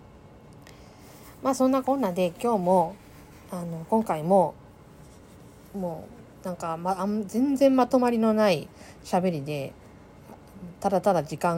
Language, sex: Japanese, female